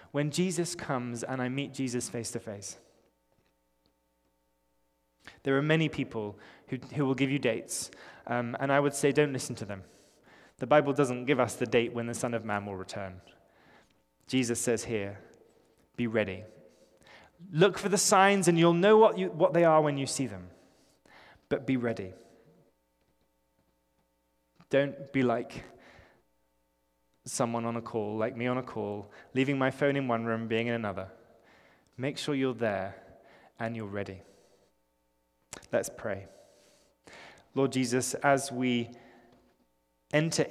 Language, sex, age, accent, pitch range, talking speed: English, male, 20-39, British, 95-140 Hz, 150 wpm